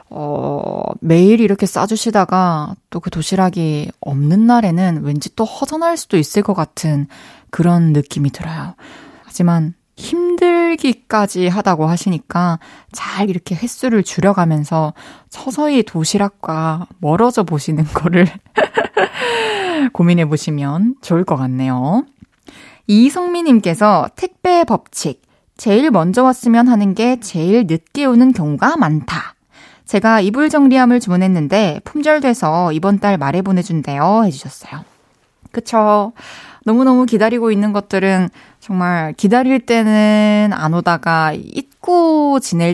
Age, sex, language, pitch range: 20-39, female, Korean, 170-235 Hz